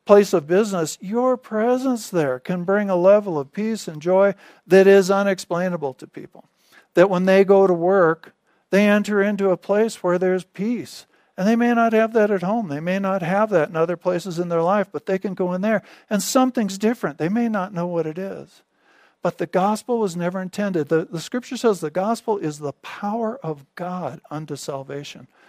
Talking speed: 205 wpm